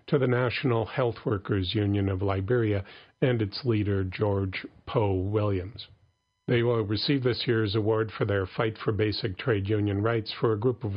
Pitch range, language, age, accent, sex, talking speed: 100-115 Hz, English, 50-69, American, male, 175 wpm